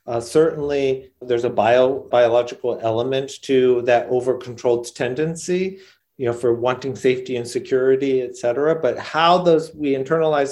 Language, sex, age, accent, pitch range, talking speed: English, male, 40-59, American, 125-150 Hz, 135 wpm